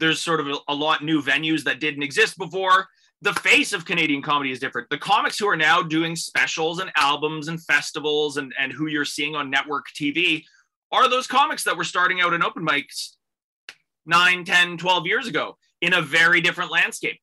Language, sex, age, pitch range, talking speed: English, male, 20-39, 140-185 Hz, 200 wpm